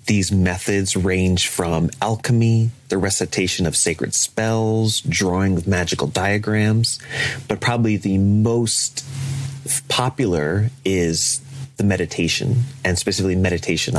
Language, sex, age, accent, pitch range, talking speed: English, male, 30-49, American, 90-120 Hz, 105 wpm